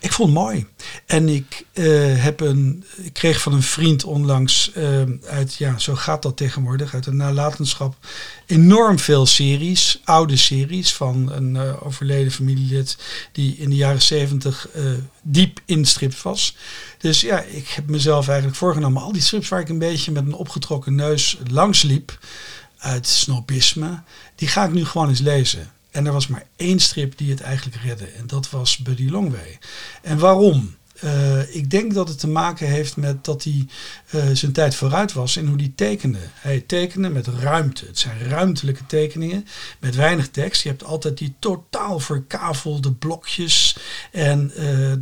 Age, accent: 50-69, Dutch